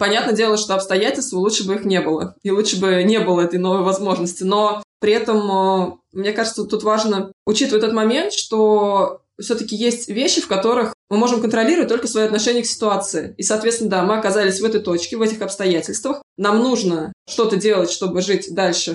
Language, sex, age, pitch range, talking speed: Russian, female, 20-39, 185-220 Hz, 190 wpm